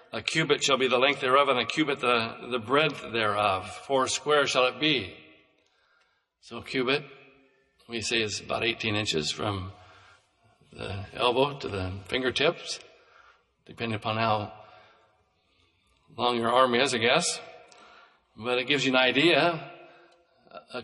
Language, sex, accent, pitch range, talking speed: English, male, American, 120-145 Hz, 145 wpm